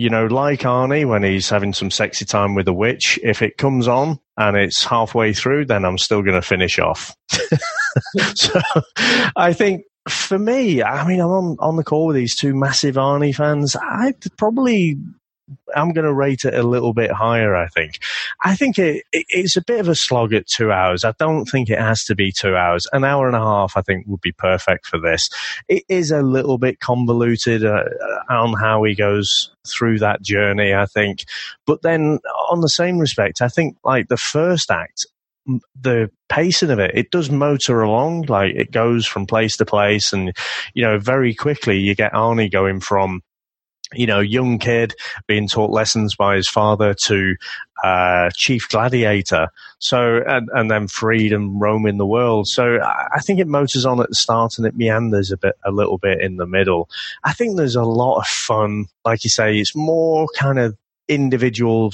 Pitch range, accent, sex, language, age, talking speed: 105-140 Hz, British, male, English, 30-49, 200 wpm